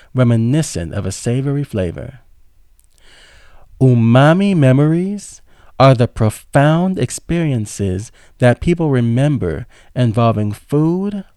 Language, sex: English, male